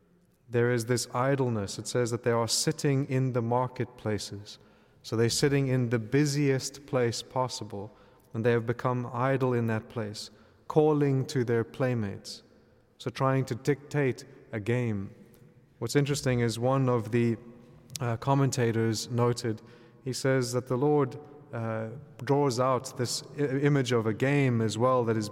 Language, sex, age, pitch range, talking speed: English, male, 30-49, 115-135 Hz, 155 wpm